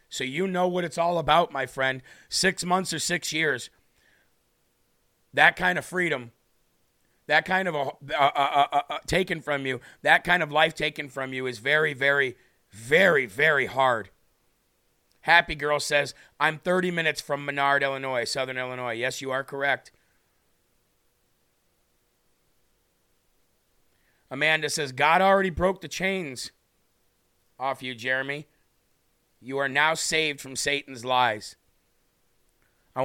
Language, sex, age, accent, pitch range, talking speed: English, male, 40-59, American, 130-165 Hz, 135 wpm